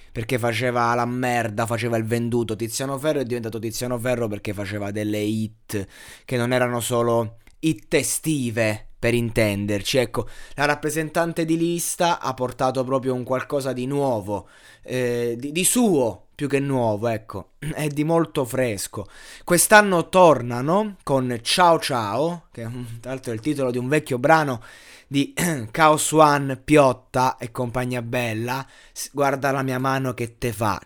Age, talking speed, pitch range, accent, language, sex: 20-39, 150 wpm, 120-150 Hz, native, Italian, male